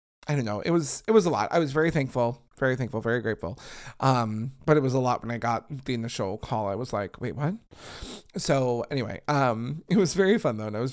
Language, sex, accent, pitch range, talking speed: English, male, American, 120-155 Hz, 245 wpm